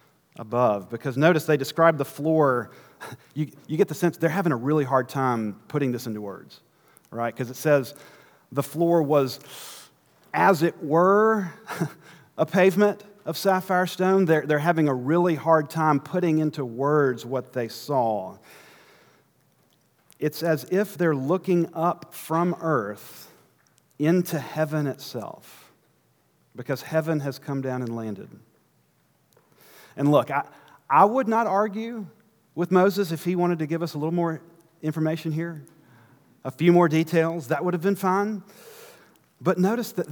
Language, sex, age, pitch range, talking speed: English, male, 40-59, 130-170 Hz, 150 wpm